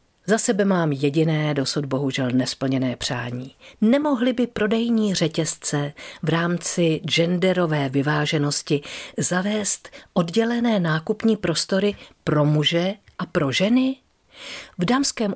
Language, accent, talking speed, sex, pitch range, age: Czech, native, 105 wpm, female, 150-205 Hz, 50-69